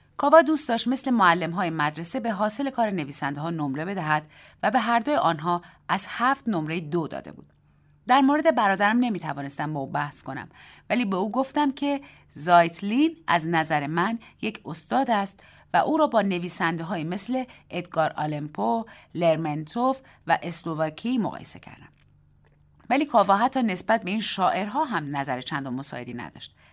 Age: 30-49